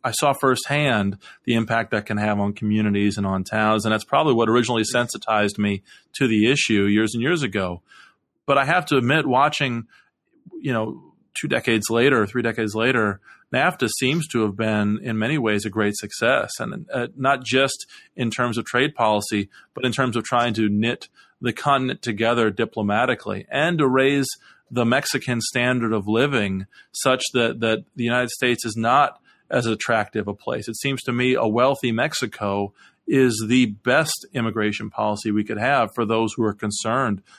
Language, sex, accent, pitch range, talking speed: English, male, American, 105-125 Hz, 180 wpm